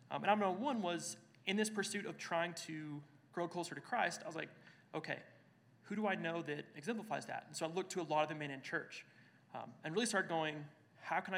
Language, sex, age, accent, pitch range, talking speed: English, male, 30-49, American, 140-175 Hz, 250 wpm